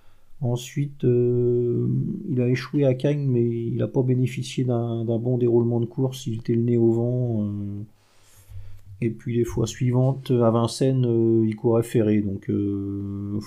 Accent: French